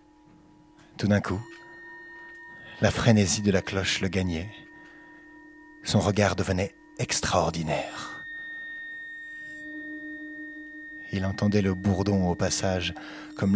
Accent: French